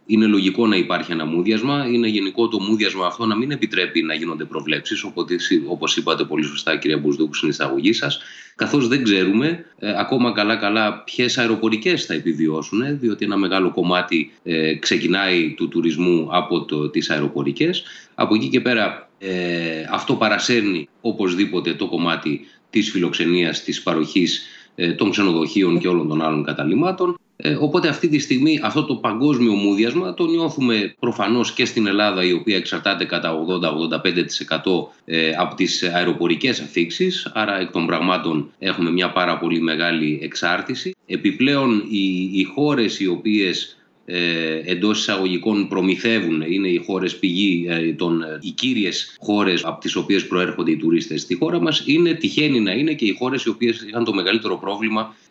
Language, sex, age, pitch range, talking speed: English, male, 30-49, 85-135 Hz, 155 wpm